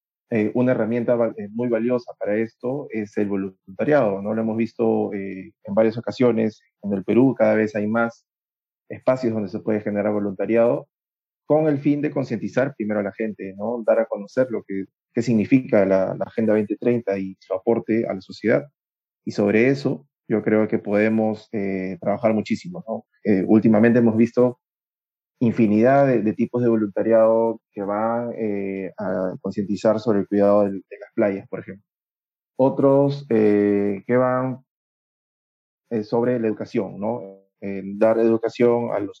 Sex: male